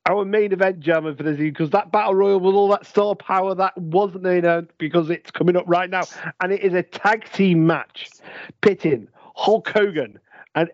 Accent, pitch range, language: British, 150-195 Hz, English